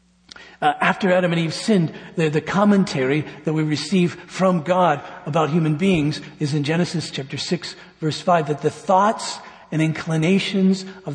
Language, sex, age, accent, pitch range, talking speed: English, male, 50-69, American, 155-185 Hz, 160 wpm